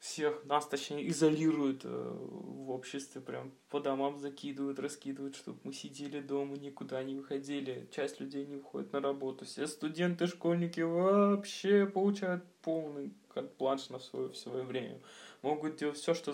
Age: 20-39